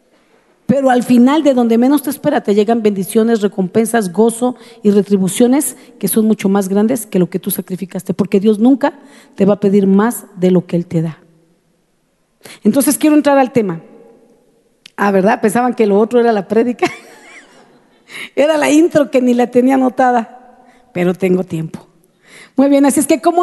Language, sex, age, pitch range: Spanish, female, 40-59, 215-280 Hz